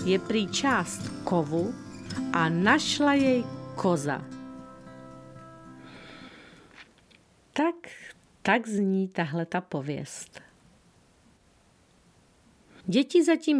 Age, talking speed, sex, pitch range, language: 40-59, 65 wpm, female, 175-260 Hz, Czech